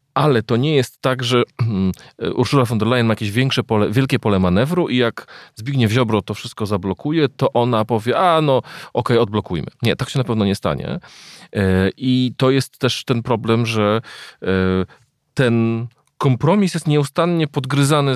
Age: 40-59